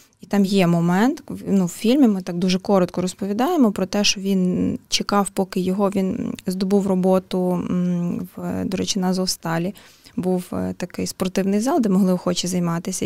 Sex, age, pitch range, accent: female, 20-39, 180-210 Hz, native